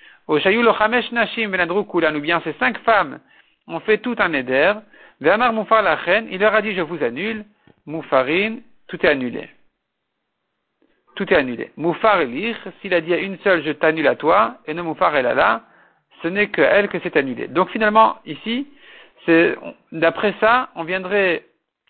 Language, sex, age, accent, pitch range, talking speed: French, male, 50-69, French, 170-220 Hz, 160 wpm